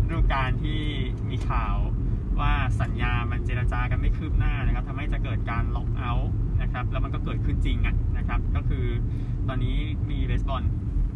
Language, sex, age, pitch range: Thai, male, 20-39, 105-120 Hz